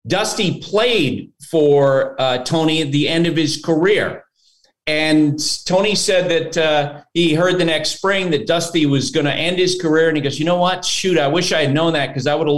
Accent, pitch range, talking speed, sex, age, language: American, 145-180 Hz, 220 wpm, male, 40-59, English